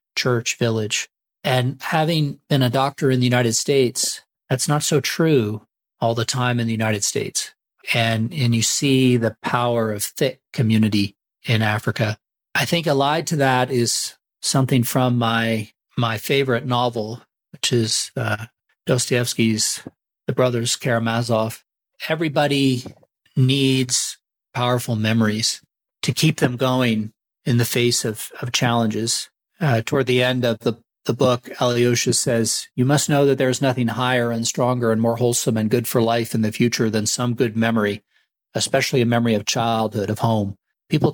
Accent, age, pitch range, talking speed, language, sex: American, 40-59, 115-130 Hz, 160 wpm, English, male